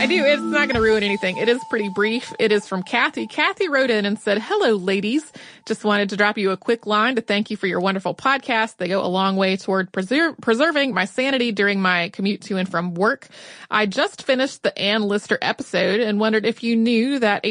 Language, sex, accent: English, female, American